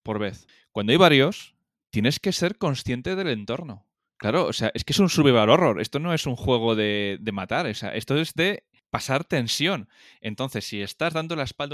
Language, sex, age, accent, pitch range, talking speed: Spanish, male, 20-39, Spanish, 105-130 Hz, 210 wpm